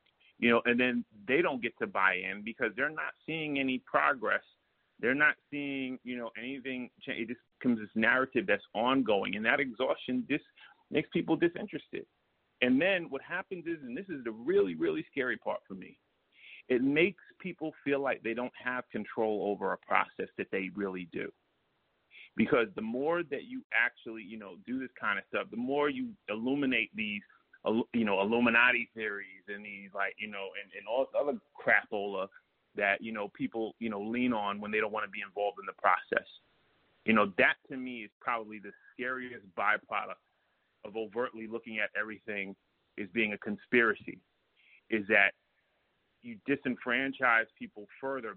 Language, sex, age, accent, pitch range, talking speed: English, male, 40-59, American, 105-135 Hz, 175 wpm